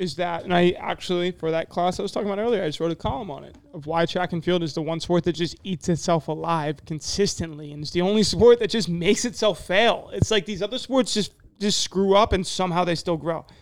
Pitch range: 160-205 Hz